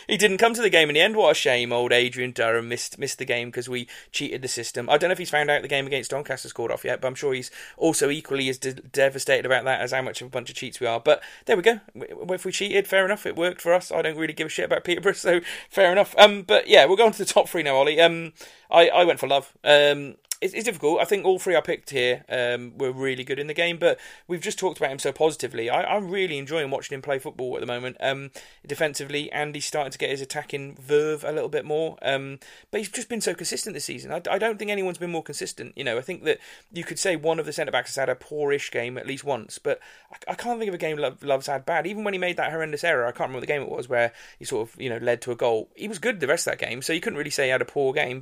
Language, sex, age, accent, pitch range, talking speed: English, male, 30-49, British, 135-190 Hz, 300 wpm